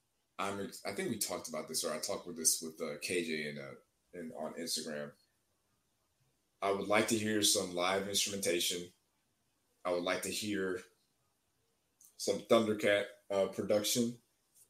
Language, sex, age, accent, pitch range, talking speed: English, male, 20-39, American, 85-110 Hz, 155 wpm